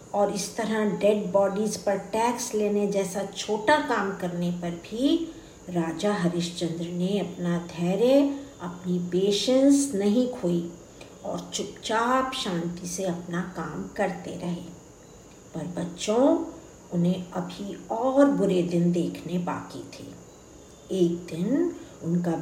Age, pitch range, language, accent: 50-69, 175-235 Hz, Hindi, native